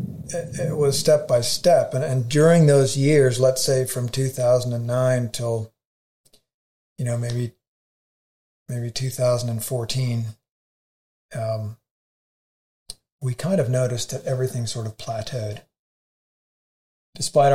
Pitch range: 120-135 Hz